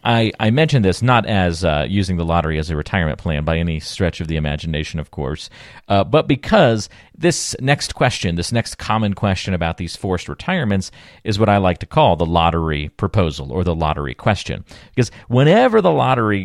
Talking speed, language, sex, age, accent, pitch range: 195 wpm, English, male, 40-59, American, 90-115 Hz